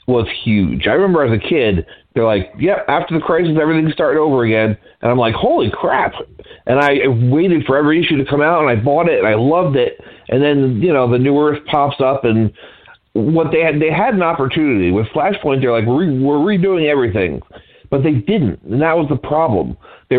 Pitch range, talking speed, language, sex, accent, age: 120-160 Hz, 220 wpm, English, male, American, 40-59